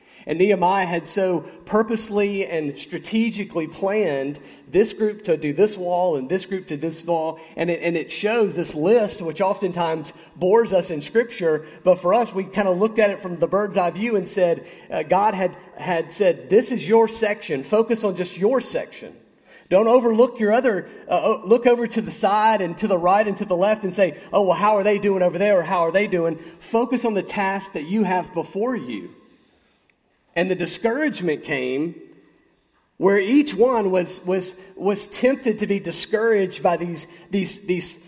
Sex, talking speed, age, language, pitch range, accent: male, 195 wpm, 40-59, English, 175-220 Hz, American